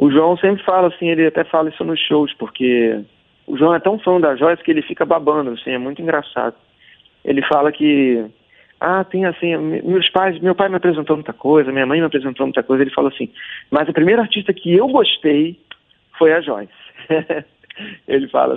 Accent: Brazilian